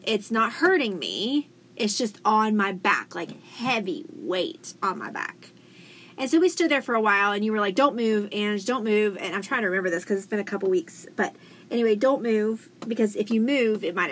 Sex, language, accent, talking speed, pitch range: female, English, American, 230 wpm, 195-240 Hz